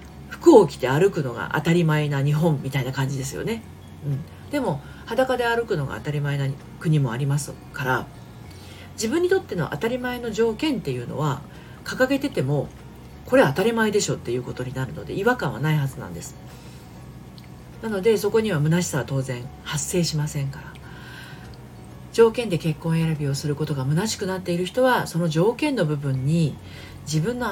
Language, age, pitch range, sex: Japanese, 40-59, 140-195 Hz, female